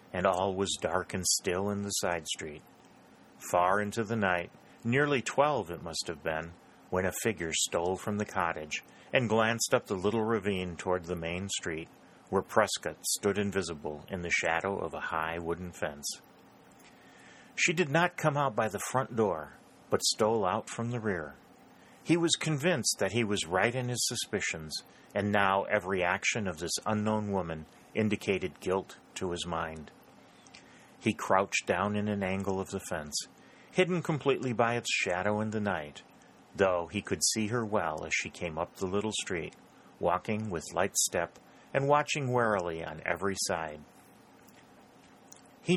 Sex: male